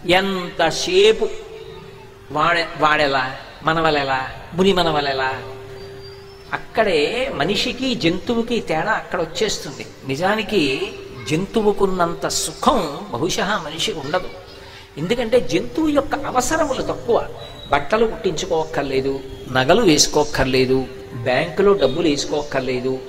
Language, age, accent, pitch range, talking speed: Telugu, 50-69, native, 135-200 Hz, 80 wpm